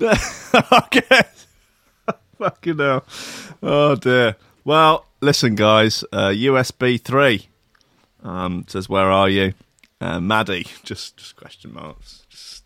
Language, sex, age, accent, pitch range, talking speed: English, male, 30-49, British, 100-145 Hz, 110 wpm